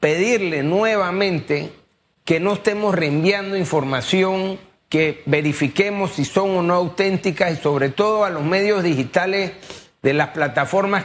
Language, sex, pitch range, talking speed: Spanish, male, 155-195 Hz, 130 wpm